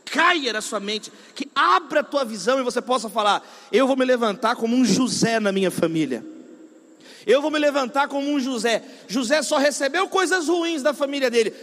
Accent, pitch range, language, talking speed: Brazilian, 230-290 Hz, Portuguese, 195 wpm